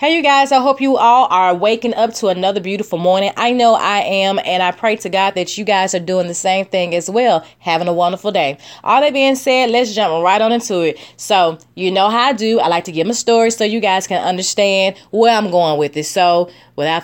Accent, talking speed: American, 250 wpm